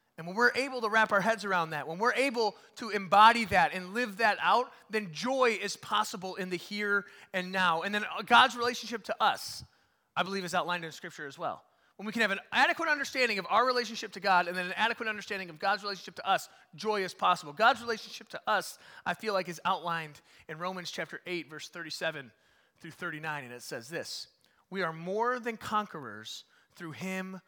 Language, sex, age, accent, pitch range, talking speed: English, male, 30-49, American, 165-220 Hz, 210 wpm